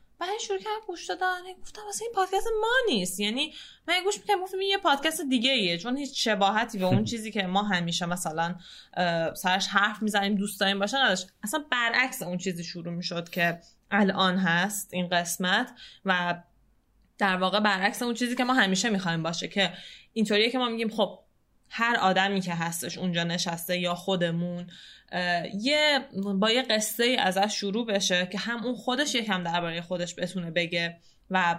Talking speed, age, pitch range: 175 wpm, 10-29, 185-250 Hz